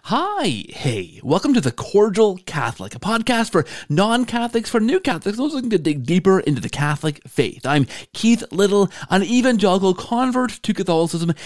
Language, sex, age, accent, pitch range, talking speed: English, male, 30-49, American, 150-220 Hz, 170 wpm